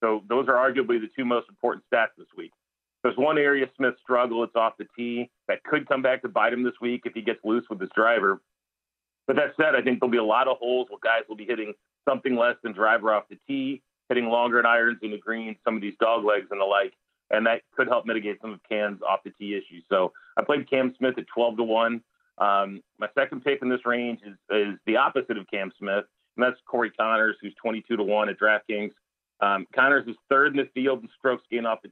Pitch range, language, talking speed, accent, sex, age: 110-125 Hz, English, 245 wpm, American, male, 40-59